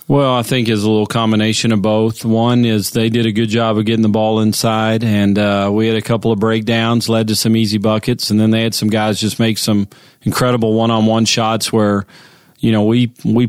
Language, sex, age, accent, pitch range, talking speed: English, male, 40-59, American, 110-120 Hz, 225 wpm